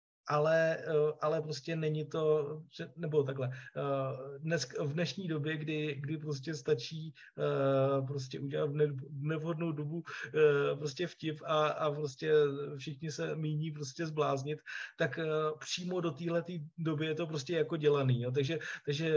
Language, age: Czech, 20-39